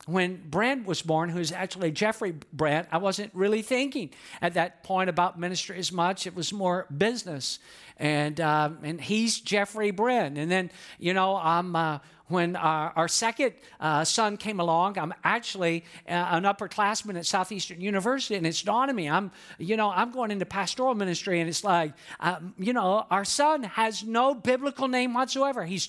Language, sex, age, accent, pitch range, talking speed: English, male, 50-69, American, 170-225 Hz, 180 wpm